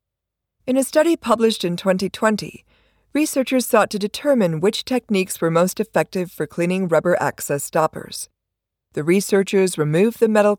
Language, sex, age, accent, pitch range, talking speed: English, female, 40-59, American, 155-220 Hz, 140 wpm